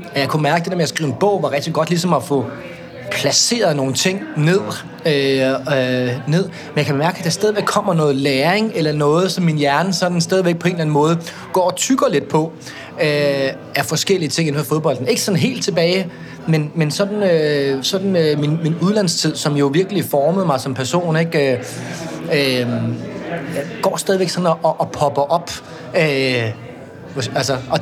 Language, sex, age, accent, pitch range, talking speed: Danish, male, 30-49, native, 135-170 Hz, 200 wpm